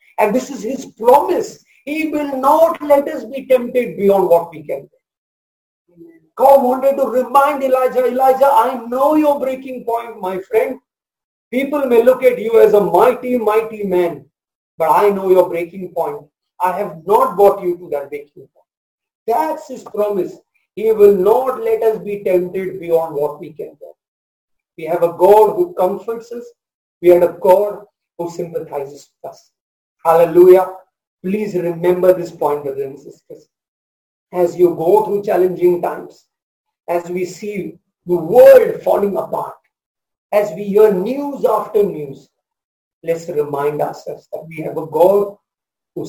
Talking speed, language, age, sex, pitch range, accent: 160 wpm, English, 50-69, male, 180-270 Hz, Indian